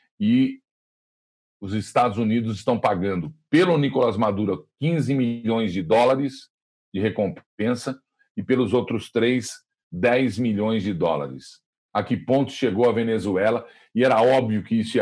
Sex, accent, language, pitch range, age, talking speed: male, Brazilian, Portuguese, 110-145 Hz, 40-59, 140 wpm